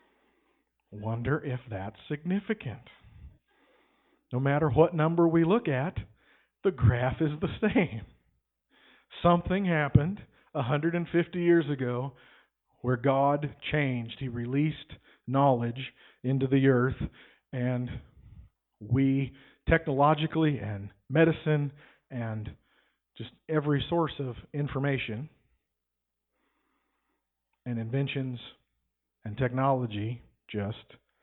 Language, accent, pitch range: English, American, 120-155 Hz